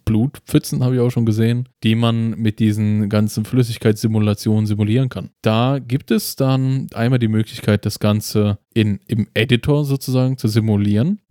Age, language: 20-39, German